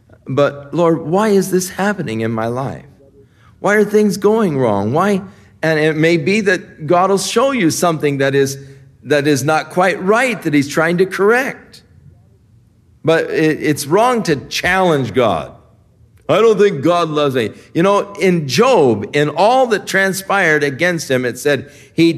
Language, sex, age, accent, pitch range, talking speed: English, male, 50-69, American, 110-180 Hz, 170 wpm